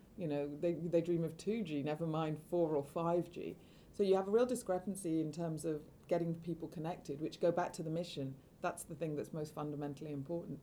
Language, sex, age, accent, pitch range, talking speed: English, female, 40-59, British, 150-185 Hz, 210 wpm